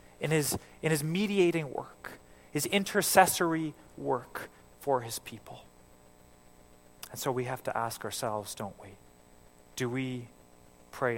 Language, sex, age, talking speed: English, male, 30-49, 130 wpm